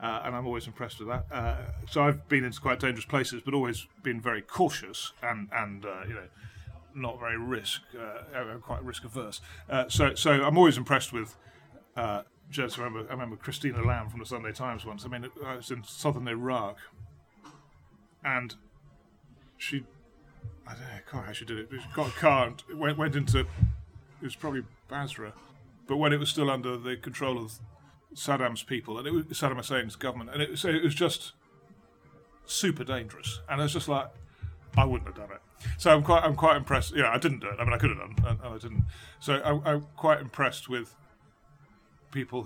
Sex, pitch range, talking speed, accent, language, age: male, 115-140 Hz, 205 wpm, British, English, 30-49